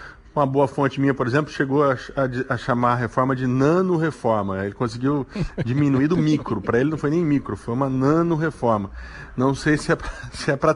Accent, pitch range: Brazilian, 110-145 Hz